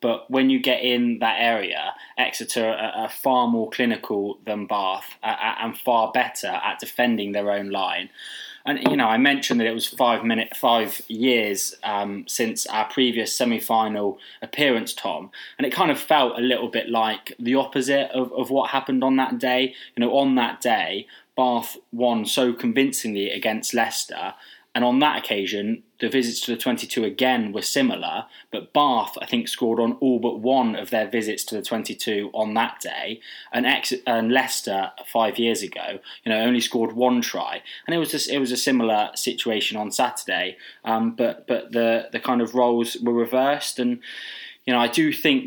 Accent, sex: British, male